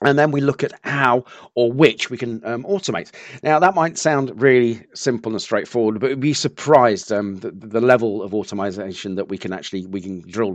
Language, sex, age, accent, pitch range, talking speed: English, male, 40-59, British, 110-145 Hz, 210 wpm